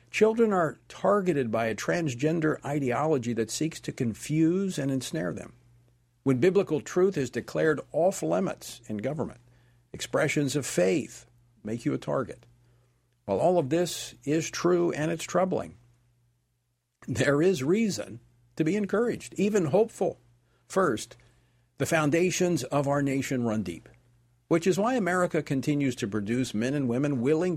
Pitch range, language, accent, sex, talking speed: 120-160 Hz, English, American, male, 140 wpm